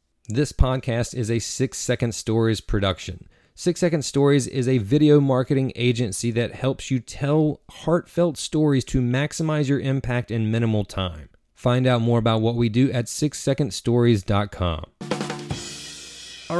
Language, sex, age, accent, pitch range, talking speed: English, male, 30-49, American, 95-135 Hz, 140 wpm